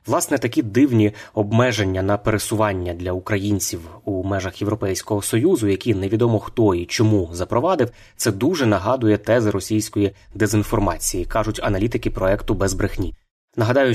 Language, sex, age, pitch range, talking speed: Ukrainian, male, 20-39, 100-115 Hz, 130 wpm